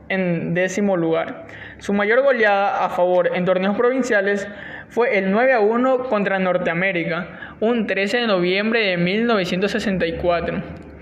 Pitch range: 185-225 Hz